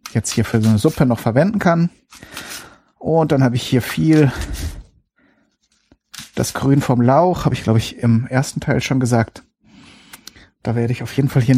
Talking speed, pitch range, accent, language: 180 wpm, 120-155 Hz, German, German